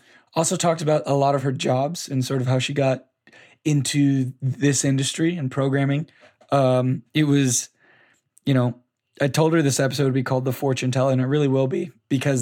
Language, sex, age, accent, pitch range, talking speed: English, male, 20-39, American, 130-150 Hz, 200 wpm